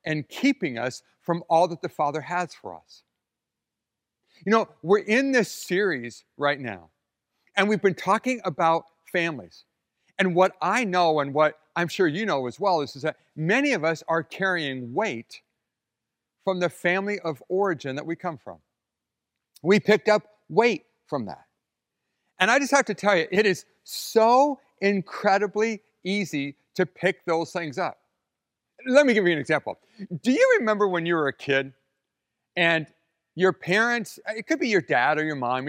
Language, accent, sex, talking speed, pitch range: English, American, male, 170 wpm, 145-200 Hz